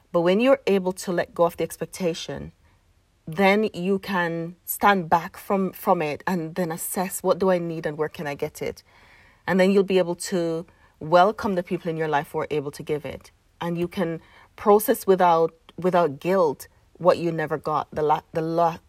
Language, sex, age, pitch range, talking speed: English, female, 40-59, 165-200 Hz, 205 wpm